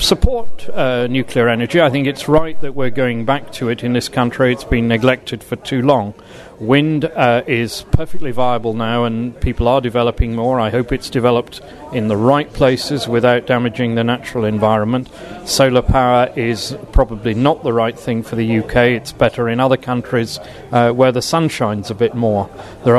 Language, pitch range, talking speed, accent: English, 120-150 Hz, 190 wpm, British